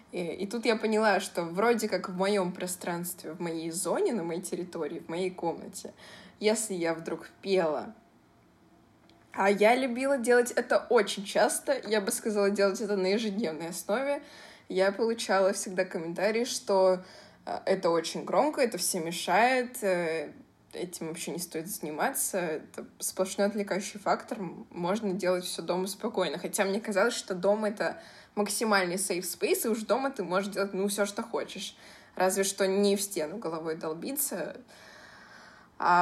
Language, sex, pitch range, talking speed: Russian, female, 180-220 Hz, 150 wpm